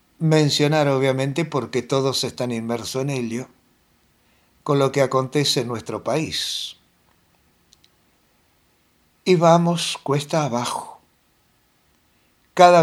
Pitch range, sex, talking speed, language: 115-160 Hz, male, 95 wpm, Spanish